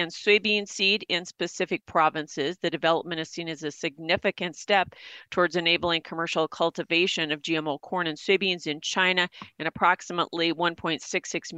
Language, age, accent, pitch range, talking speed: English, 40-59, American, 160-190 Hz, 145 wpm